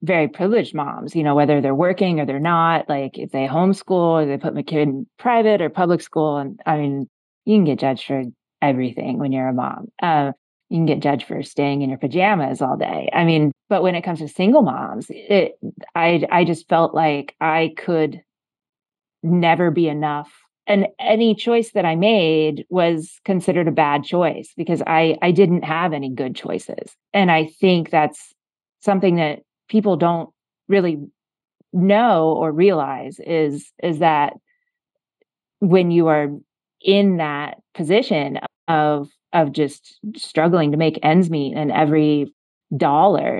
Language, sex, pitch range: English, female, 150-185 Hz